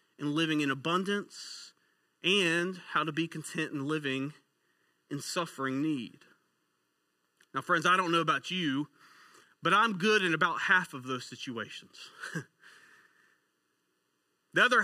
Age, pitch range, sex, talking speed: 30-49, 130-195 Hz, male, 130 wpm